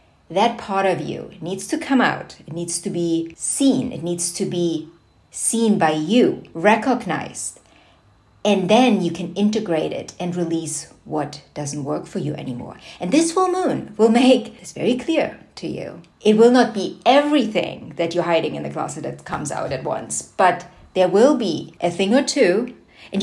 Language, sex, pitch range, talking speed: English, female, 175-225 Hz, 185 wpm